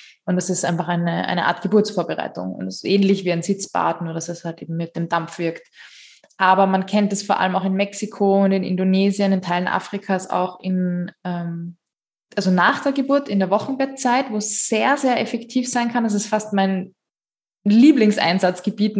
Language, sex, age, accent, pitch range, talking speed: German, female, 20-39, German, 180-210 Hz, 190 wpm